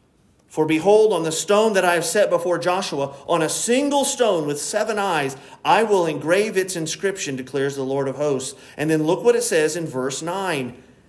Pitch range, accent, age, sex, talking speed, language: 165-215 Hz, American, 40-59, male, 200 wpm, English